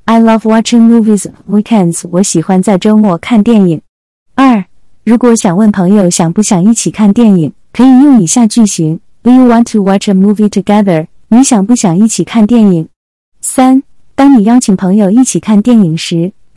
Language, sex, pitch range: Chinese, female, 185-235 Hz